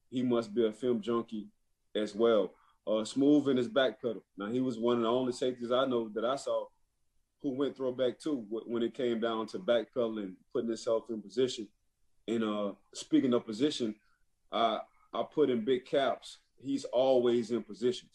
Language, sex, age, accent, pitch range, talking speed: English, male, 20-39, American, 110-125 Hz, 185 wpm